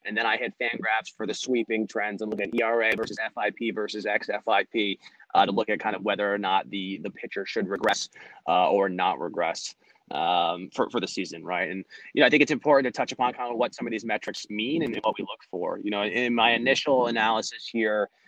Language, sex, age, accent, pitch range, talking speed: English, male, 20-39, American, 105-120 Hz, 235 wpm